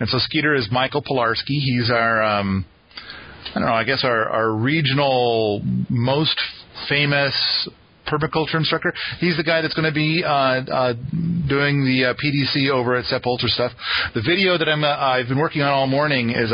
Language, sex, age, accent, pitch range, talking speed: English, male, 40-59, American, 120-160 Hz, 180 wpm